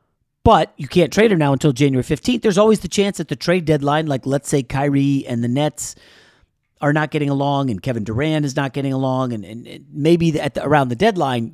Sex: male